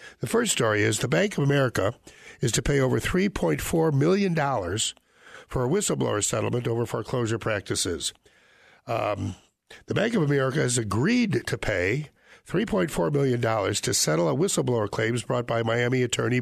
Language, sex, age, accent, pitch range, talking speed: English, male, 60-79, American, 115-165 Hz, 150 wpm